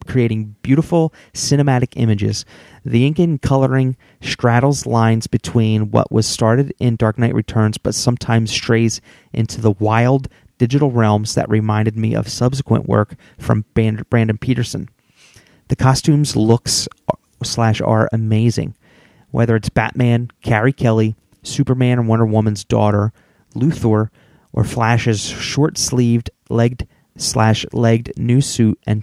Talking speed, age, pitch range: 125 wpm, 30-49, 110-130 Hz